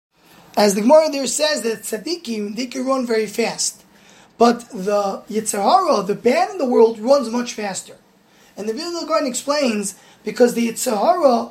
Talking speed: 160 wpm